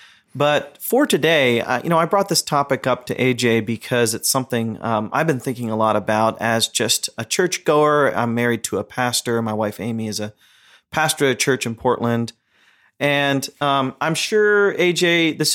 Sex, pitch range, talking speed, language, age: male, 115-140 Hz, 190 wpm, English, 30-49